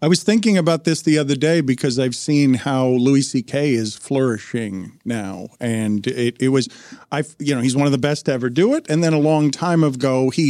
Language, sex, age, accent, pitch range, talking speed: English, male, 50-69, American, 140-180 Hz, 225 wpm